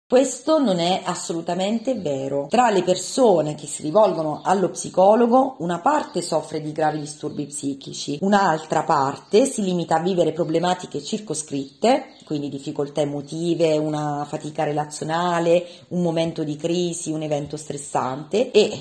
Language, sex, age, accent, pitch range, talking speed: Italian, female, 40-59, native, 155-235 Hz, 135 wpm